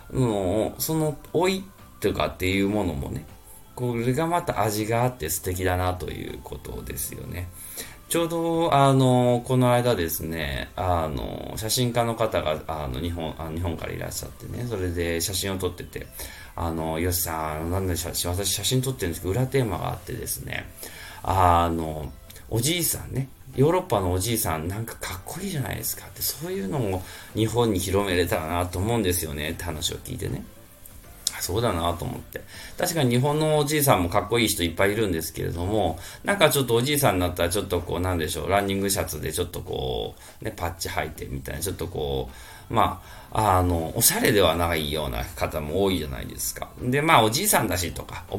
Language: Japanese